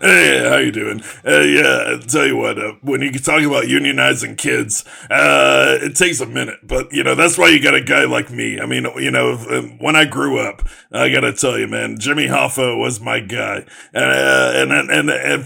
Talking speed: 220 wpm